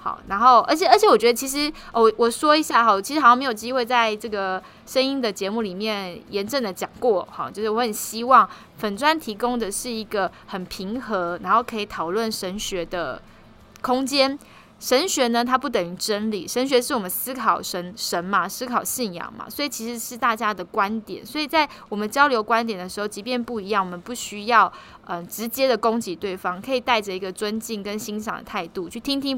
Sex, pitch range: female, 200-255 Hz